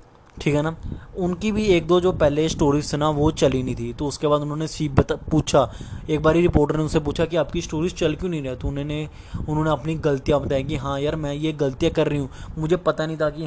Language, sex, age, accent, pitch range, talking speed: Hindi, male, 20-39, native, 140-170 Hz, 255 wpm